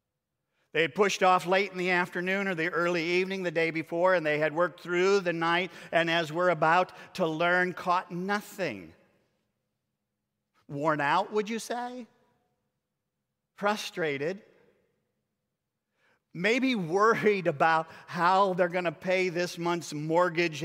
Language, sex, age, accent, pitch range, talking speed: English, male, 50-69, American, 155-185 Hz, 135 wpm